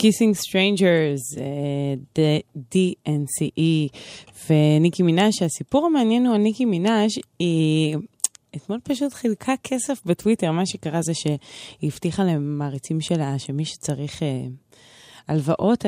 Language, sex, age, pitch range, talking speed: Hebrew, female, 20-39, 145-190 Hz, 110 wpm